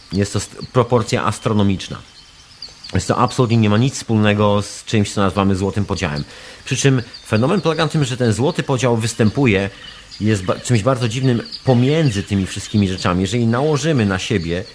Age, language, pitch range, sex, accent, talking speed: 40-59, Polish, 95-125 Hz, male, native, 165 wpm